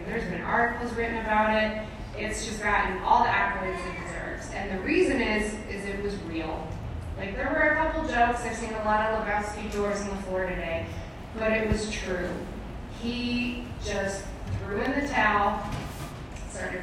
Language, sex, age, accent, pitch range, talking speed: English, female, 20-39, American, 195-255 Hz, 180 wpm